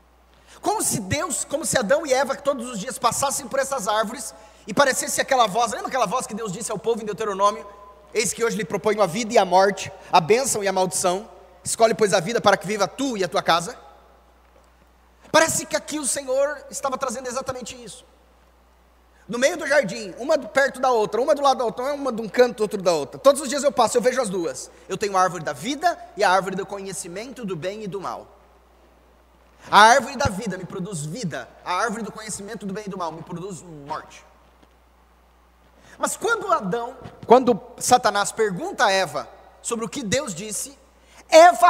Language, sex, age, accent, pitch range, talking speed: Portuguese, male, 20-39, Brazilian, 160-255 Hz, 205 wpm